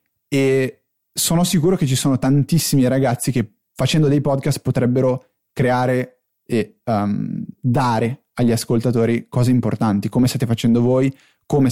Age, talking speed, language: 20-39, 135 wpm, Italian